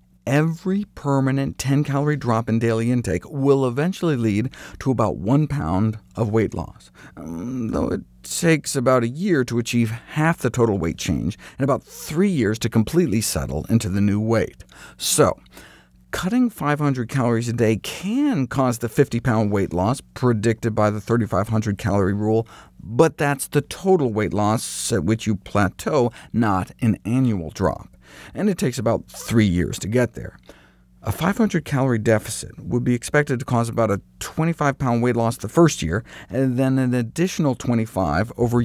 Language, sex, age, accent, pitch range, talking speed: English, male, 50-69, American, 100-140 Hz, 160 wpm